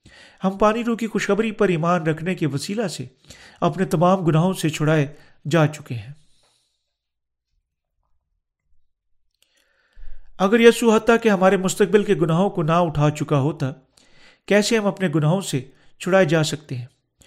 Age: 40-59